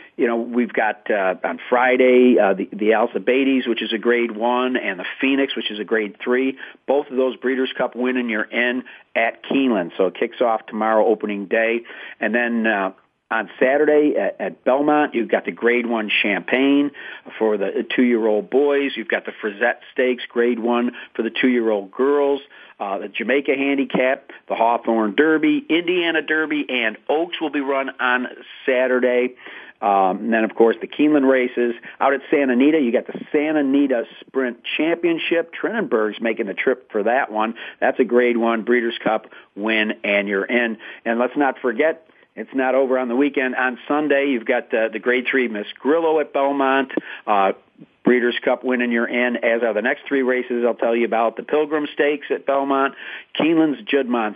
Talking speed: 185 wpm